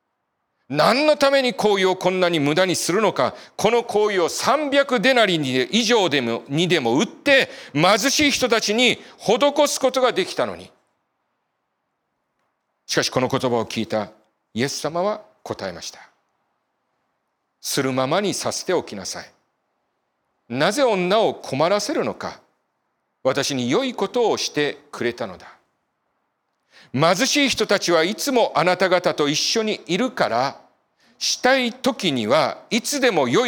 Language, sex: Japanese, male